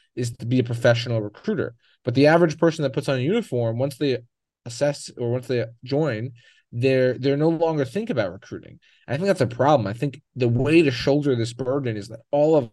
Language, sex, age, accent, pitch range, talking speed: English, male, 30-49, American, 115-140 Hz, 220 wpm